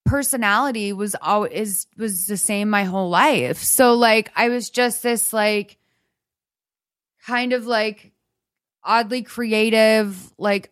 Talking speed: 130 wpm